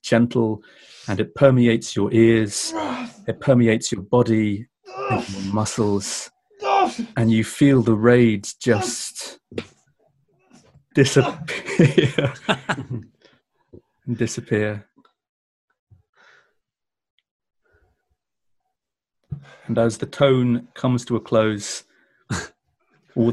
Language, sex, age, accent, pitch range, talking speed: English, male, 40-59, British, 100-125 Hz, 80 wpm